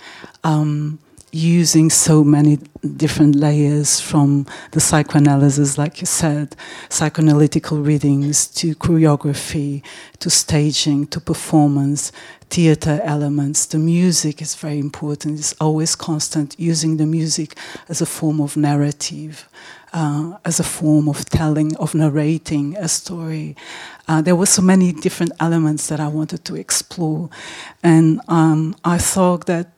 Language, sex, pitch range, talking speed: English, female, 150-165 Hz, 130 wpm